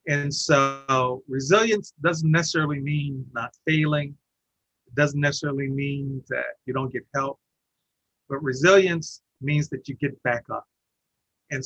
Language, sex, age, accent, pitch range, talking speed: English, male, 50-69, American, 135-165 Hz, 135 wpm